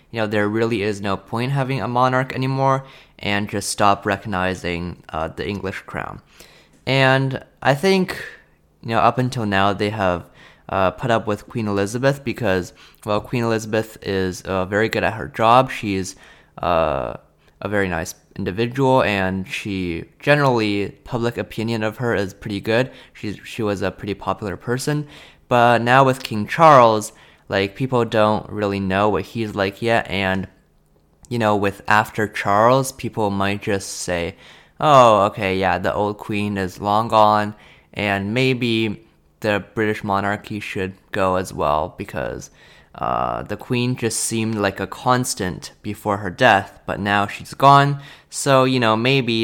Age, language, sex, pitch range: 20-39, Chinese, male, 100-120 Hz